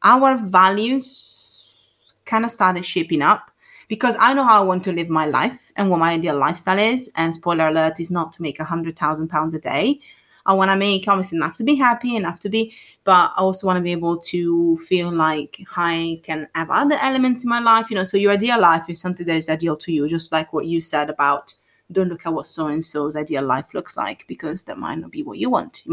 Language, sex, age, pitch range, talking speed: English, female, 20-39, 165-200 Hz, 240 wpm